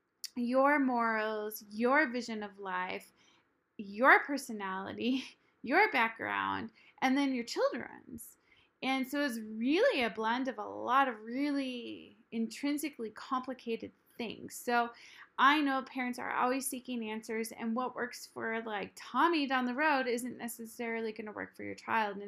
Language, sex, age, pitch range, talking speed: English, female, 20-39, 225-270 Hz, 145 wpm